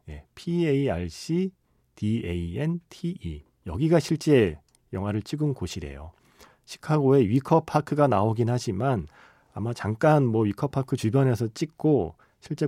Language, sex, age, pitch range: Korean, male, 40-59, 100-140 Hz